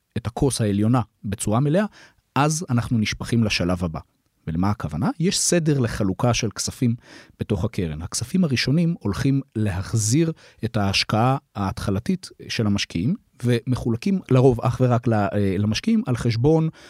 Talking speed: 125 wpm